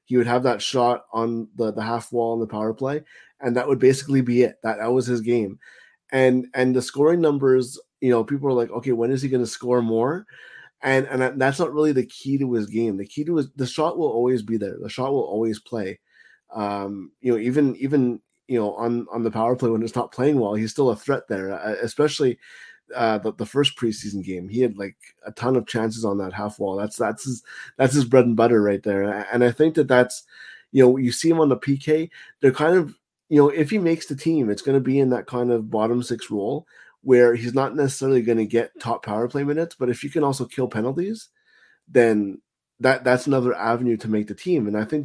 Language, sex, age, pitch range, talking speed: English, male, 20-39, 115-135 Hz, 245 wpm